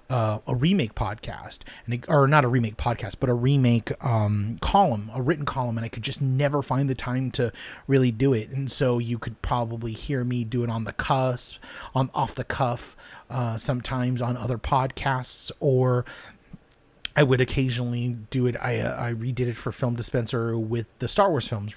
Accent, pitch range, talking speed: American, 120-145 Hz, 190 wpm